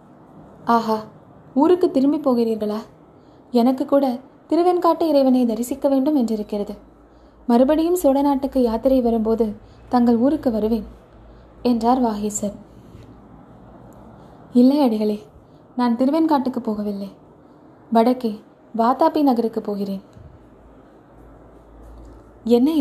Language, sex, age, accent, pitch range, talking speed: Tamil, female, 20-39, native, 225-275 Hz, 80 wpm